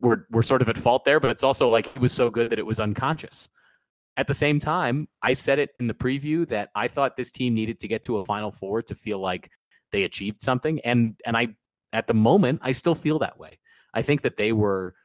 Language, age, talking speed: English, 30-49, 250 wpm